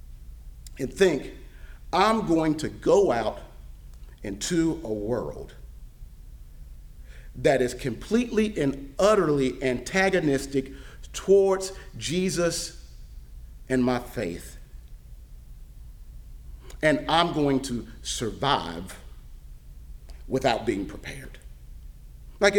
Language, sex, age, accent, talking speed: English, male, 40-59, American, 80 wpm